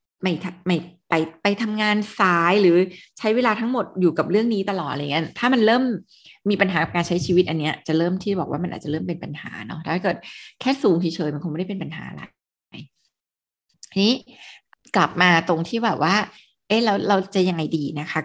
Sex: female